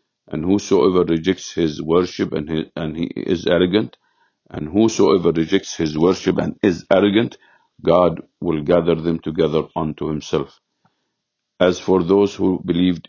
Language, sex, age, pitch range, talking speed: English, male, 50-69, 80-90 Hz, 140 wpm